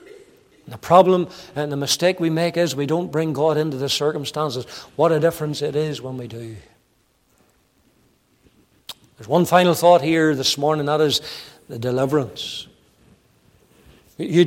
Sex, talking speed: male, 145 wpm